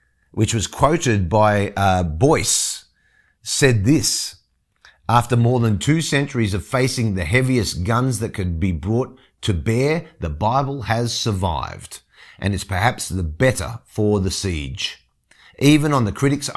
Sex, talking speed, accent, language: male, 145 wpm, Australian, English